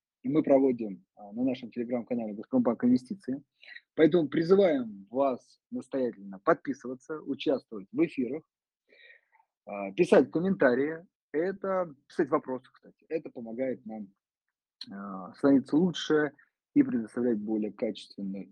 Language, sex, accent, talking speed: Russian, male, native, 100 wpm